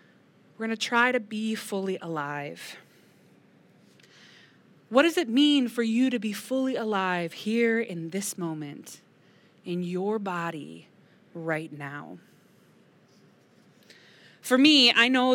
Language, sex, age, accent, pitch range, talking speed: English, female, 20-39, American, 185-245 Hz, 115 wpm